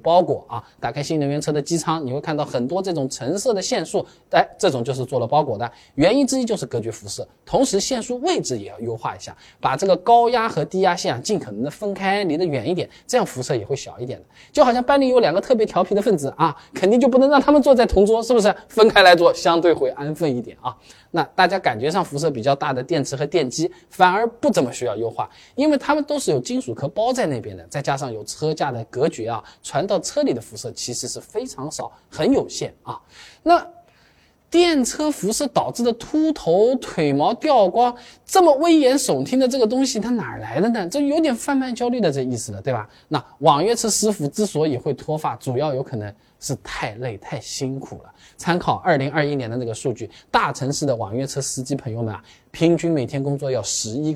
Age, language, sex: 20-39, Chinese, male